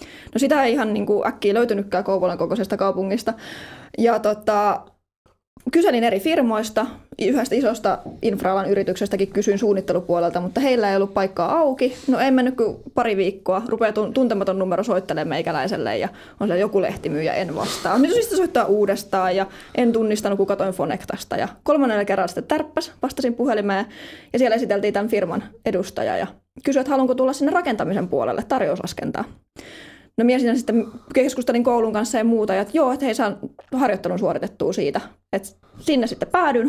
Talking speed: 155 wpm